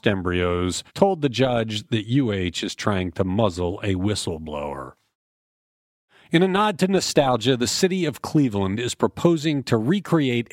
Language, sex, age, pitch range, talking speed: English, male, 40-59, 105-155 Hz, 145 wpm